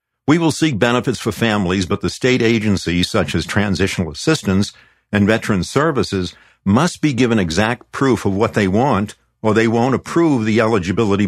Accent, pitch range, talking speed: American, 95-125 Hz, 170 wpm